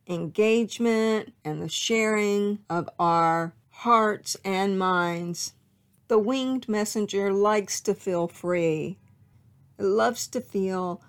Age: 50-69